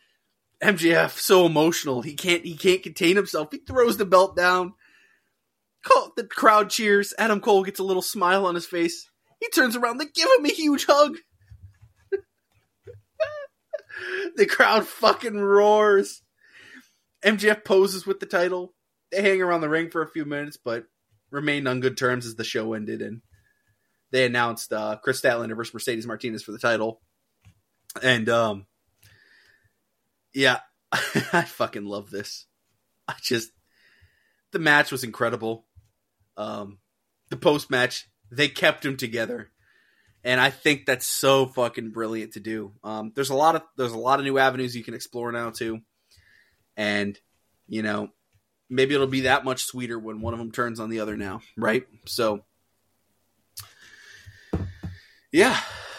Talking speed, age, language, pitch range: 150 wpm, 20-39, English, 110-185 Hz